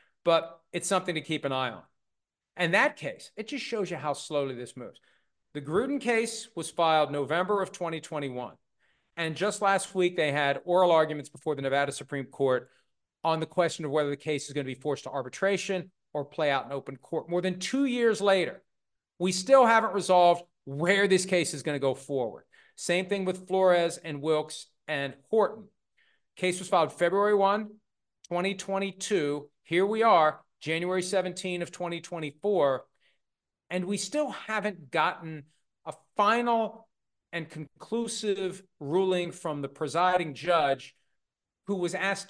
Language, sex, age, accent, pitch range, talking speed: English, male, 40-59, American, 145-190 Hz, 165 wpm